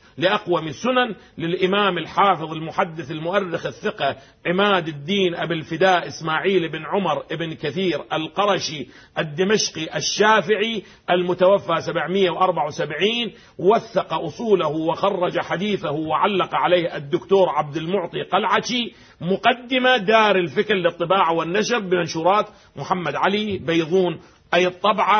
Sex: male